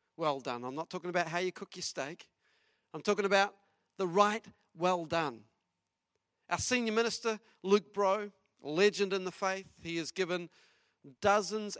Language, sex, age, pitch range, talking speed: English, male, 40-59, 160-220 Hz, 160 wpm